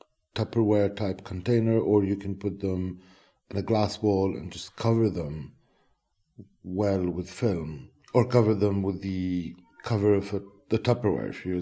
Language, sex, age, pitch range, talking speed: English, male, 50-69, 95-120 Hz, 155 wpm